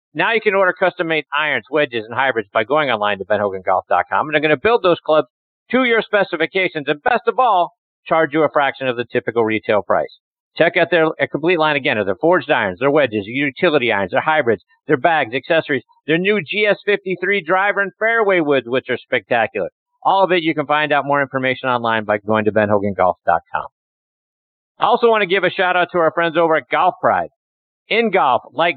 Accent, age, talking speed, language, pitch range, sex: American, 50-69, 200 wpm, English, 125-185 Hz, male